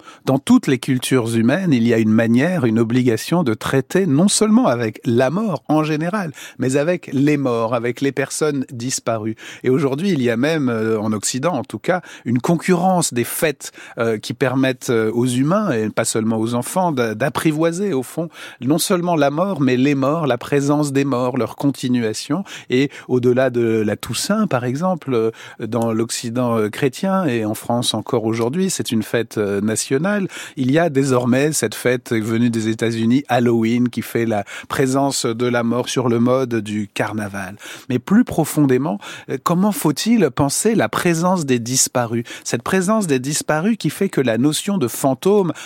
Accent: French